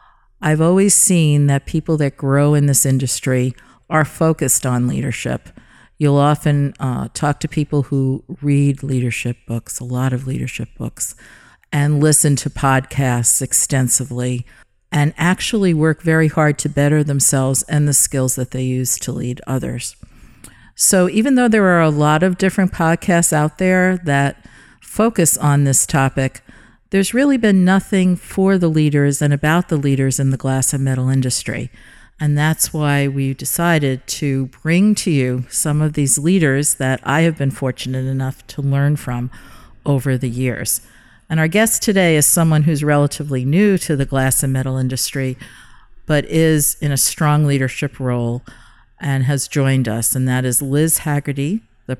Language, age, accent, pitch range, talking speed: English, 50-69, American, 130-155 Hz, 165 wpm